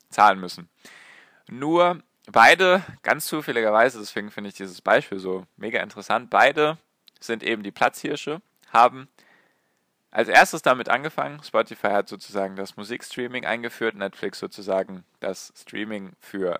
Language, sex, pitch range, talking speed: German, male, 100-125 Hz, 125 wpm